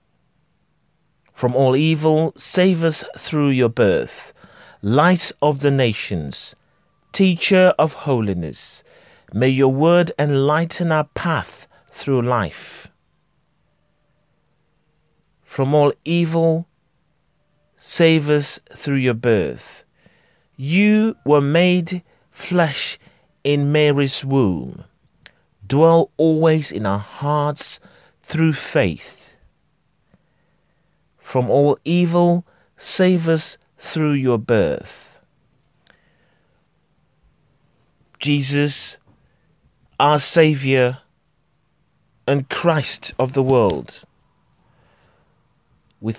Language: English